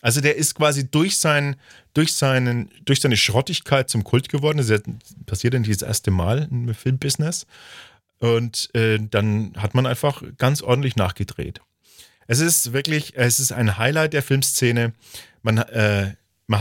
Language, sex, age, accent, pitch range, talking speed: German, male, 40-59, German, 105-140 Hz, 165 wpm